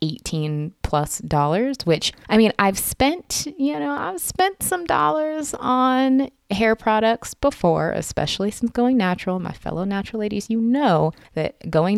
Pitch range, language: 150-215 Hz, English